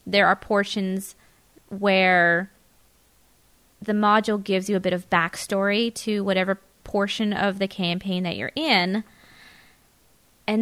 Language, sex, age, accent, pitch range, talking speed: English, female, 20-39, American, 185-220 Hz, 125 wpm